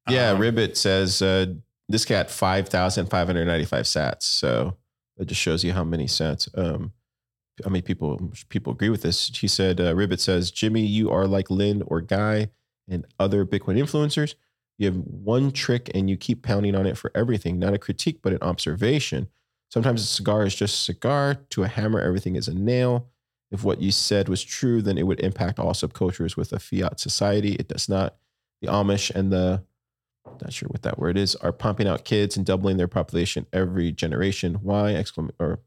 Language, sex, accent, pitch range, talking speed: English, male, American, 90-110 Hz, 190 wpm